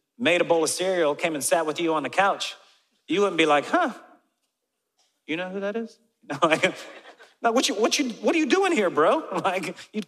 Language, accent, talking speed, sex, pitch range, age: English, American, 195 wpm, male, 160-205 Hz, 40-59